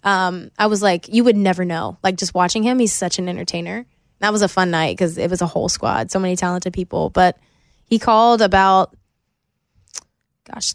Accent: American